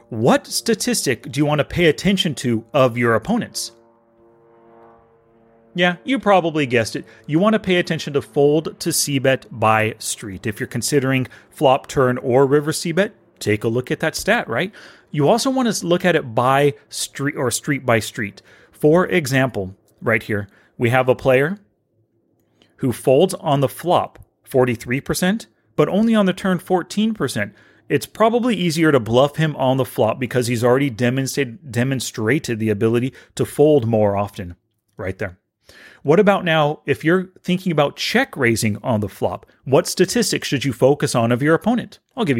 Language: English